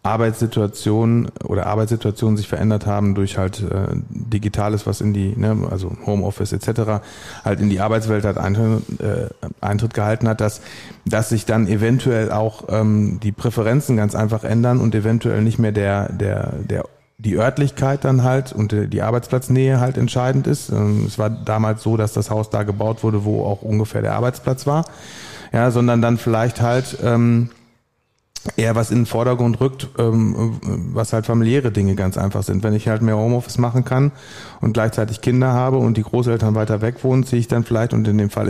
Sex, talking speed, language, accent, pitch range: male, 180 wpm, German, German, 105-120 Hz